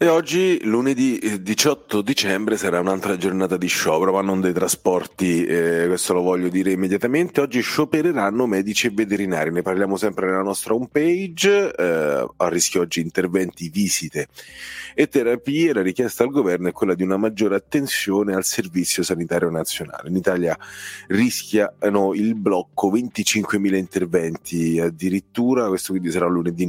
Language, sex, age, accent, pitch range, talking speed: Italian, male, 30-49, native, 90-110 Hz, 150 wpm